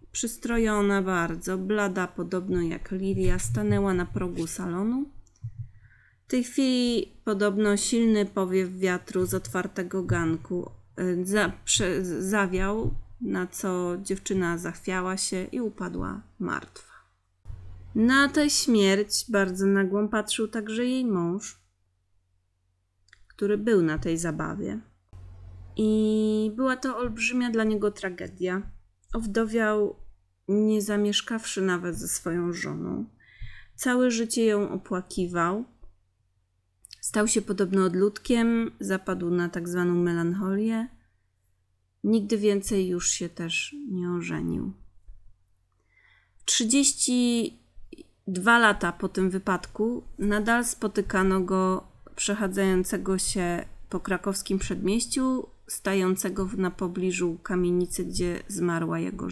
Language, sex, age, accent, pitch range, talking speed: Polish, female, 30-49, native, 165-210 Hz, 100 wpm